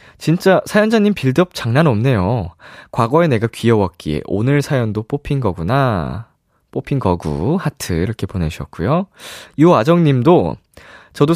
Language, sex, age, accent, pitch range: Korean, male, 20-39, native, 90-140 Hz